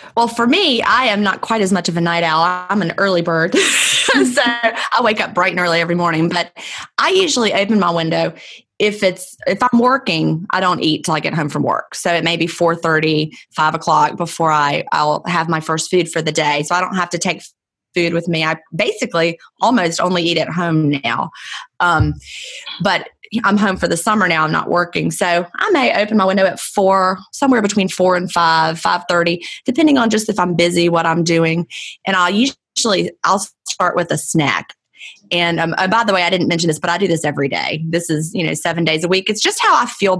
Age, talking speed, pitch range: 20-39, 230 wpm, 165-195 Hz